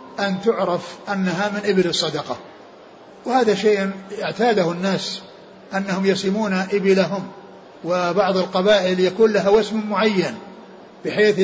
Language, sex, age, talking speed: Arabic, male, 60-79, 105 wpm